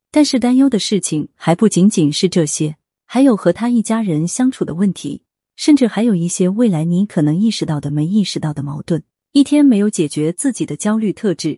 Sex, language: female, Chinese